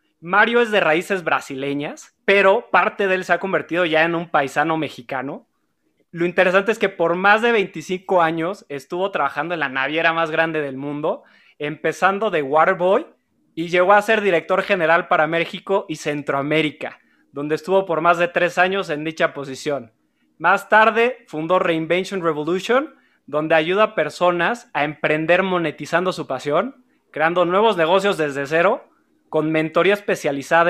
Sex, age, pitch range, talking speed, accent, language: male, 20-39, 155-190 Hz, 155 wpm, Mexican, Spanish